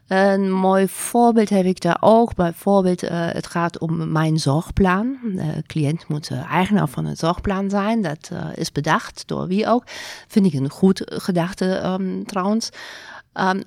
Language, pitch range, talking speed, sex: Dutch, 155-190 Hz, 165 wpm, female